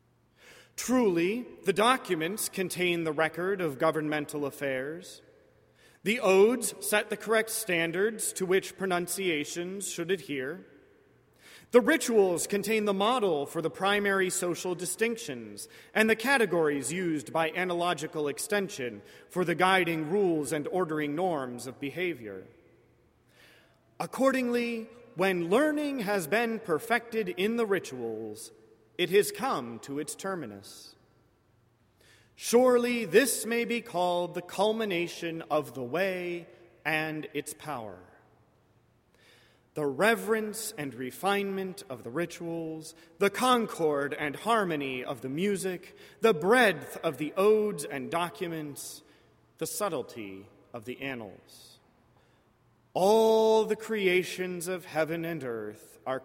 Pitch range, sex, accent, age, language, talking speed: 145-205 Hz, male, American, 30-49, English, 115 wpm